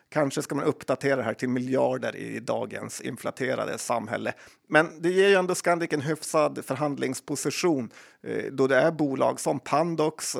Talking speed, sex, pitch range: 150 wpm, male, 130-155 Hz